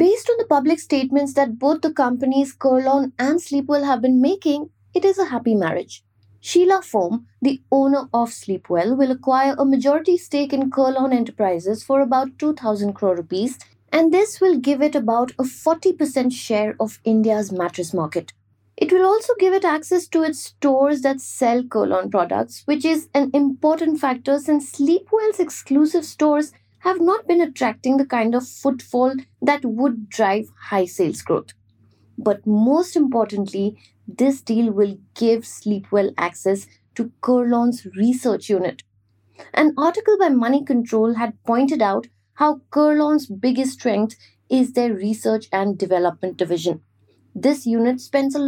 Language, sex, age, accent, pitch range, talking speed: English, female, 20-39, Indian, 210-290 Hz, 150 wpm